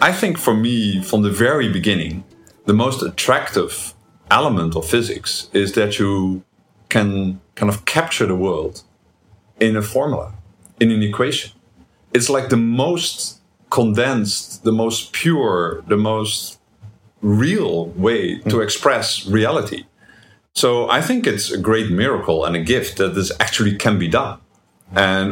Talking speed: 145 wpm